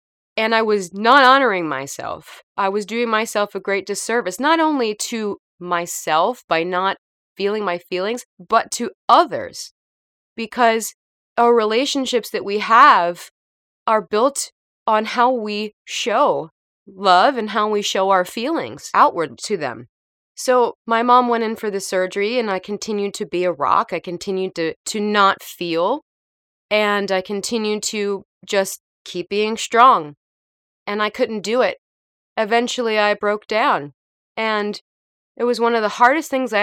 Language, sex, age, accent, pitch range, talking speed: English, female, 20-39, American, 185-225 Hz, 155 wpm